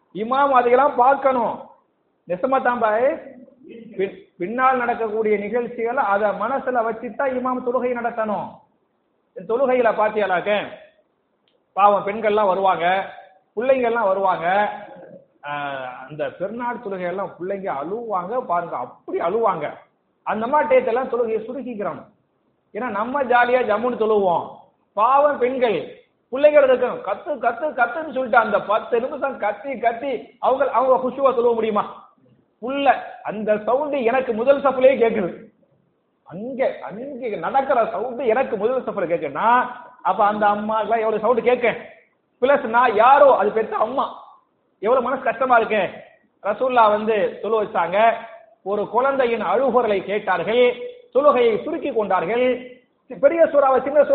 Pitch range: 210-270 Hz